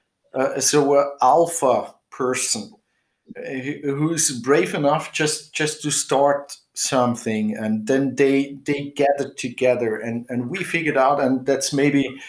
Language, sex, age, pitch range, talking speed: English, male, 50-69, 115-140 Hz, 135 wpm